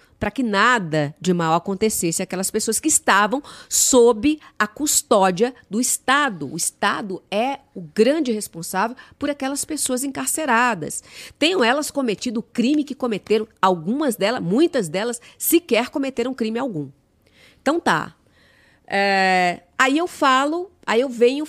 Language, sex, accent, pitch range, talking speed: Portuguese, female, Brazilian, 185-255 Hz, 135 wpm